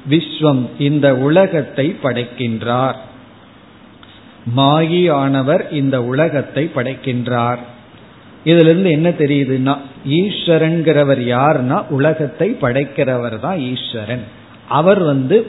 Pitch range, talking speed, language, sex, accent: 130-165 Hz, 80 wpm, Tamil, male, native